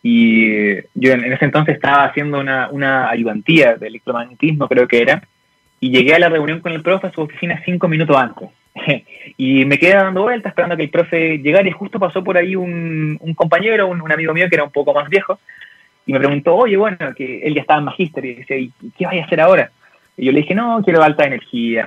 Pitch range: 130-175 Hz